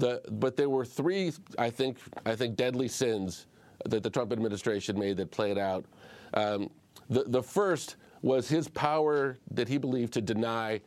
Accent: American